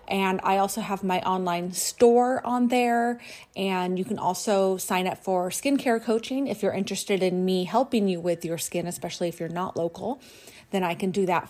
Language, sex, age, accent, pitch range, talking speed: English, female, 30-49, American, 170-210 Hz, 200 wpm